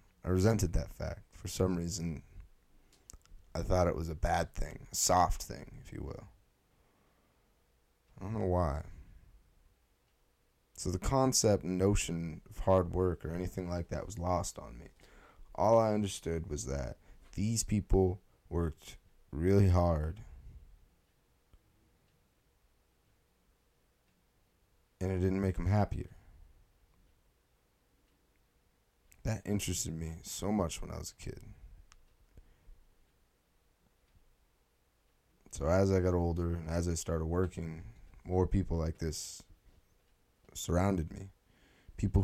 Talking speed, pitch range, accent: 120 wpm, 80-95 Hz, American